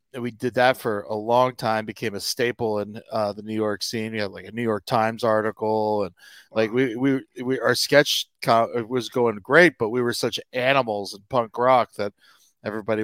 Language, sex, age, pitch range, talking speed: English, male, 30-49, 110-130 Hz, 205 wpm